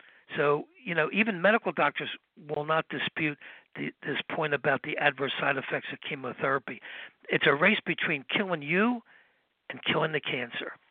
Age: 60-79